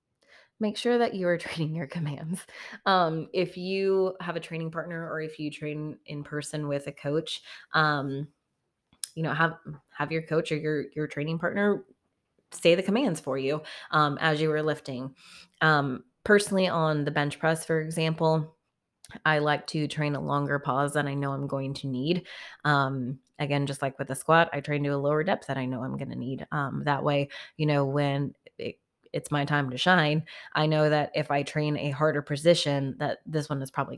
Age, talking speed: 20-39, 200 wpm